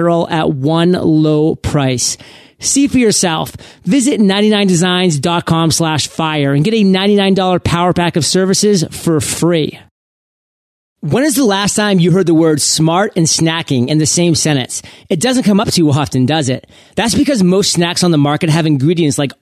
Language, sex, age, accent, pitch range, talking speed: English, male, 30-49, American, 155-195 Hz, 170 wpm